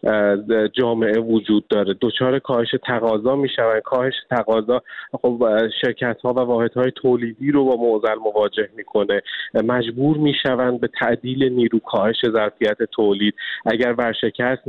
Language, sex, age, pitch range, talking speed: Persian, male, 30-49, 110-130 Hz, 120 wpm